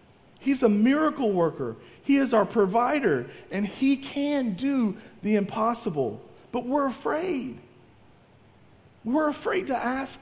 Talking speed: 125 wpm